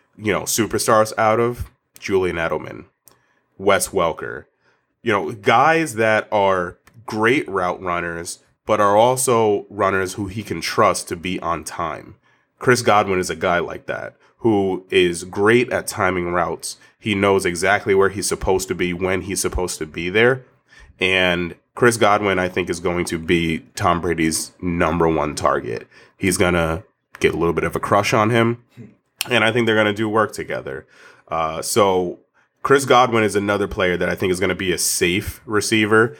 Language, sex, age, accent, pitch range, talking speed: English, male, 30-49, American, 90-105 Hz, 180 wpm